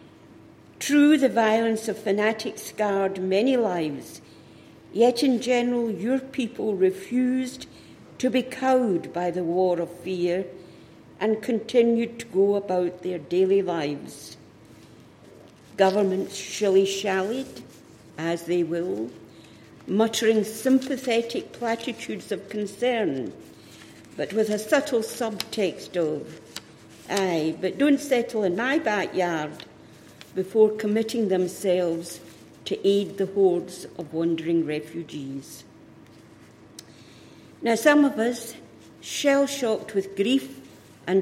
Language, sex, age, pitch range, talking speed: English, female, 60-79, 175-230 Hz, 105 wpm